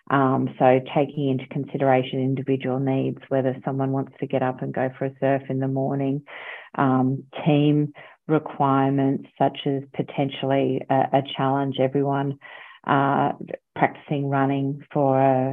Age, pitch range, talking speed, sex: 40-59, 135-145 Hz, 140 wpm, female